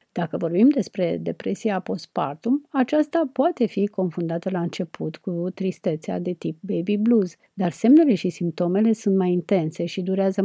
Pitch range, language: 175-215 Hz, Romanian